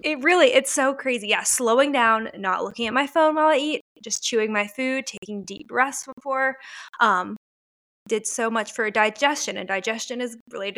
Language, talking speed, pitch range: English, 190 wpm, 210-260 Hz